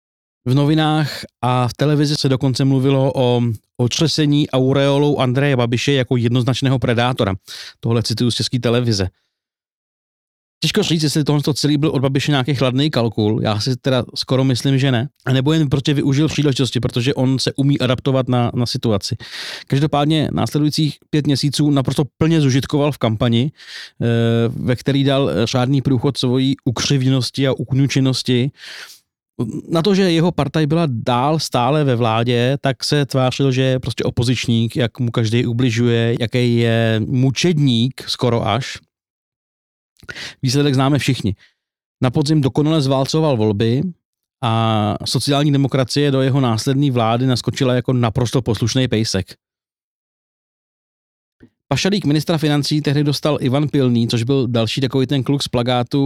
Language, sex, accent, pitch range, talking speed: Czech, male, native, 120-145 Hz, 140 wpm